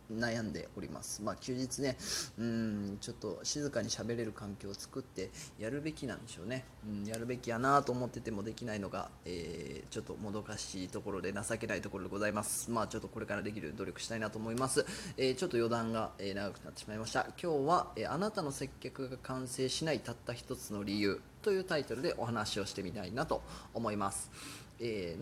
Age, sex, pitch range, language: 20-39, male, 105-135 Hz, Japanese